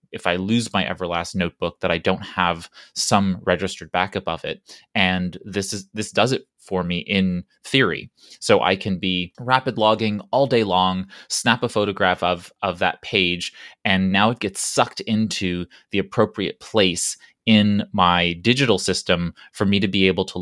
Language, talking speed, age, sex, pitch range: English, 175 wpm, 20-39, male, 90-110 Hz